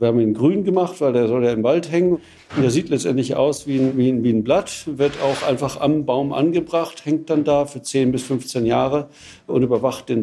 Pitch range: 115-135 Hz